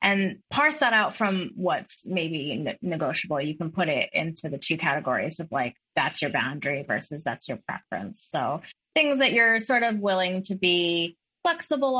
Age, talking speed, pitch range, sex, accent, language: 20-39, 175 wpm, 160-210 Hz, female, American, English